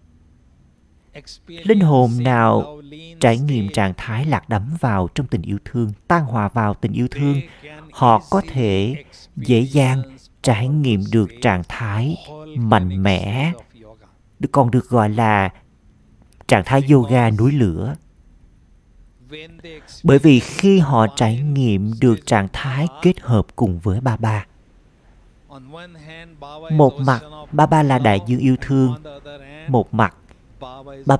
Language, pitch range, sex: Vietnamese, 110-150 Hz, male